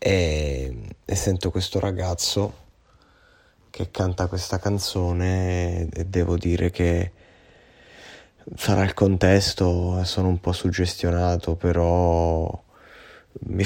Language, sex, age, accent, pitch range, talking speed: Italian, male, 20-39, native, 85-95 Hz, 90 wpm